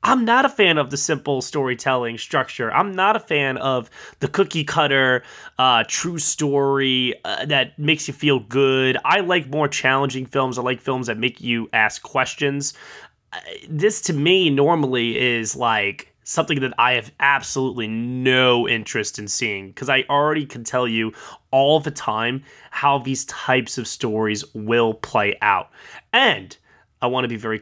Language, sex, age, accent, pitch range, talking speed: English, male, 20-39, American, 120-150 Hz, 165 wpm